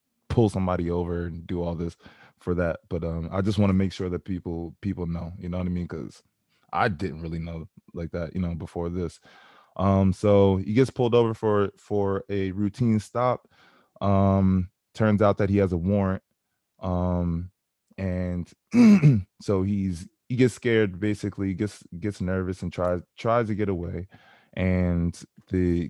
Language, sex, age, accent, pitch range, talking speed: English, male, 20-39, American, 90-110 Hz, 175 wpm